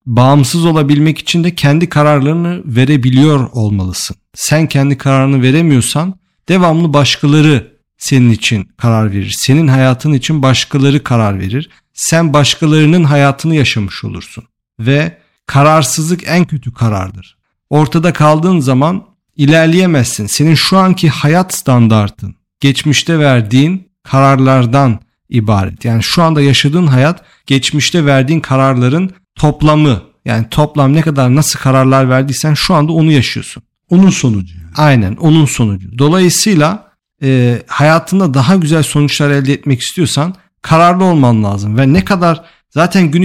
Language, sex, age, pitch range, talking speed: Turkish, male, 50-69, 125-160 Hz, 125 wpm